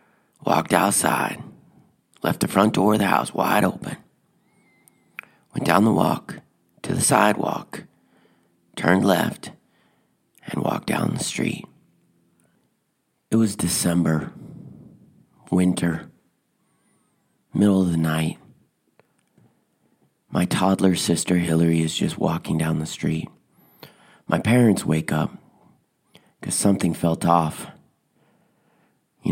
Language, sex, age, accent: English, male, 40-59, American